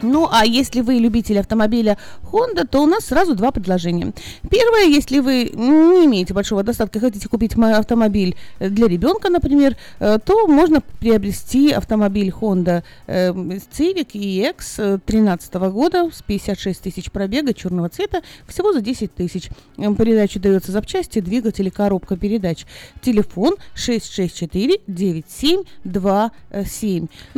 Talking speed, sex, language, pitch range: 120 wpm, female, Russian, 190-260 Hz